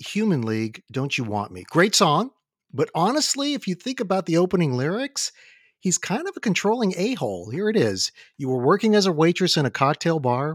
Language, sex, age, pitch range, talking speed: English, male, 50-69, 130-195 Hz, 205 wpm